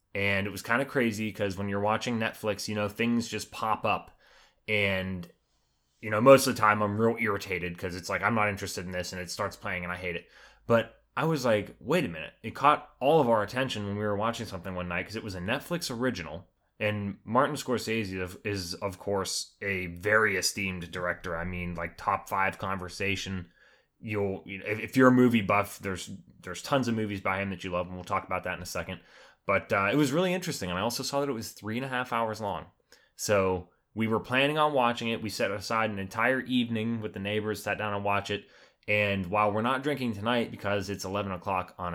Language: English